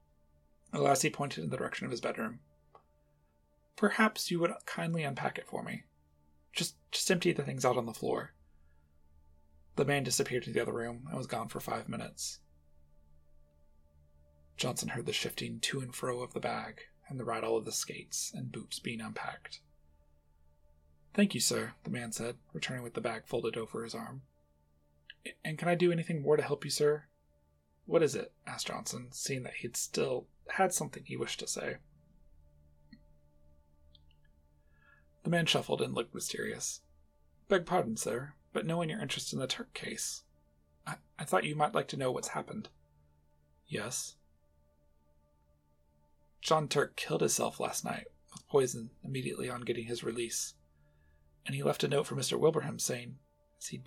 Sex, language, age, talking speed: male, English, 30-49, 165 wpm